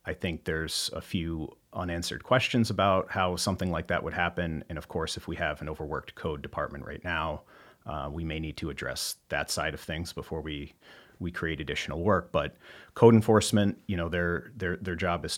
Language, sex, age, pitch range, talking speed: English, male, 30-49, 80-95 Hz, 205 wpm